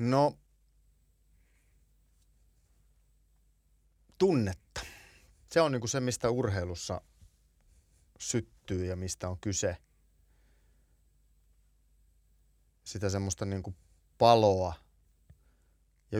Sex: male